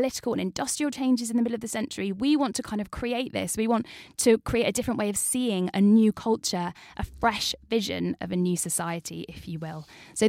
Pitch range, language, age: 180-235 Hz, English, 10-29